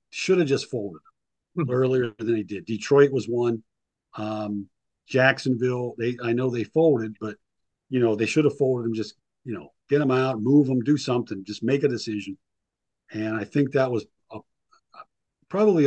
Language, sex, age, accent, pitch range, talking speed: English, male, 50-69, American, 115-140 Hz, 180 wpm